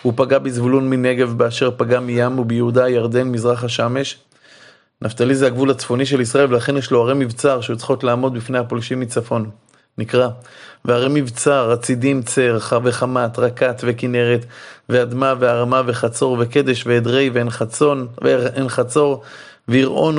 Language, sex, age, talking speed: Hebrew, male, 30-49, 130 wpm